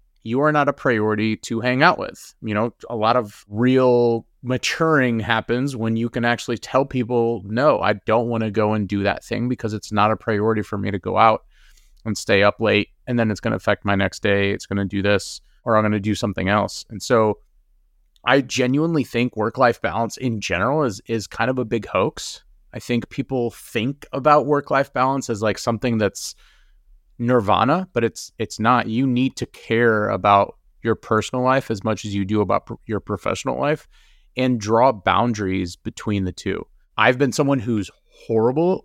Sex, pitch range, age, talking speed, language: male, 105-130 Hz, 30-49, 200 wpm, English